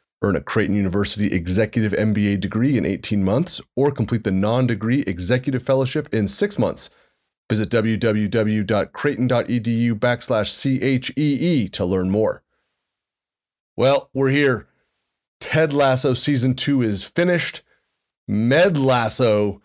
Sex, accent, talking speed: male, American, 115 wpm